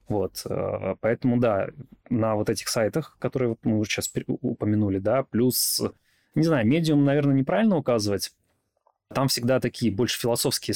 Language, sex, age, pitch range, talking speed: Russian, male, 20-39, 105-125 Hz, 140 wpm